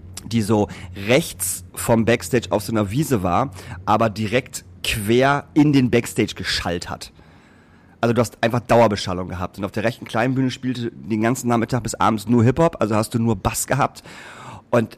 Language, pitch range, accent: German, 110-130 Hz, German